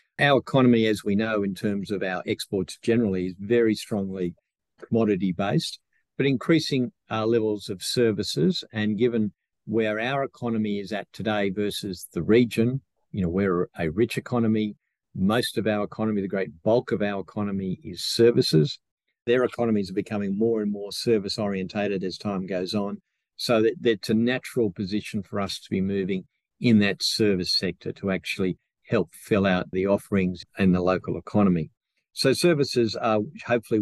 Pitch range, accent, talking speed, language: 100-115 Hz, Australian, 170 wpm, English